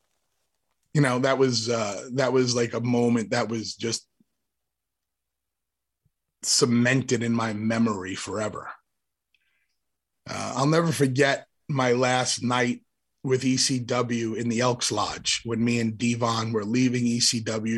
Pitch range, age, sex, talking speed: 115-130 Hz, 30-49, male, 130 wpm